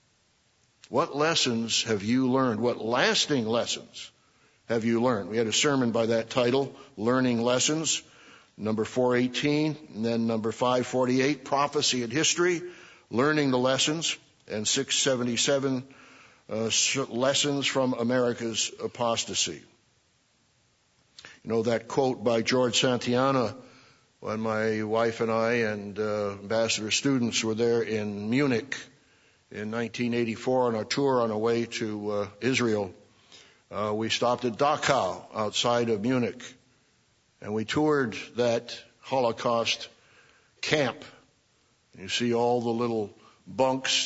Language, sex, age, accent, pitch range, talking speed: English, male, 60-79, American, 115-130 Hz, 125 wpm